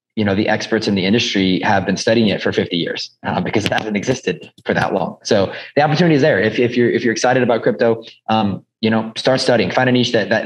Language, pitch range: English, 105-120 Hz